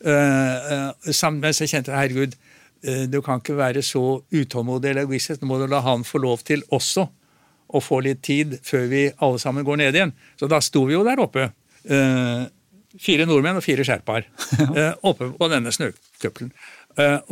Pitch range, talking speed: 135-165 Hz, 185 wpm